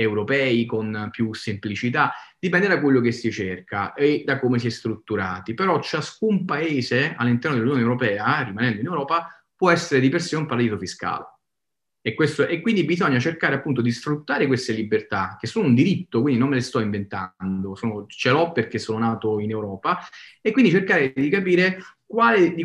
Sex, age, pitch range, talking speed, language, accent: male, 30-49, 115-145 Hz, 185 wpm, Italian, native